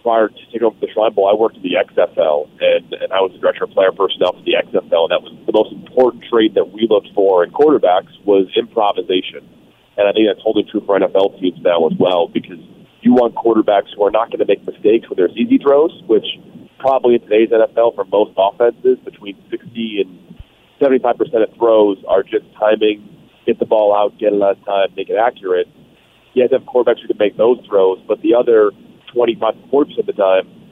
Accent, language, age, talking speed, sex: American, English, 30-49, 225 wpm, male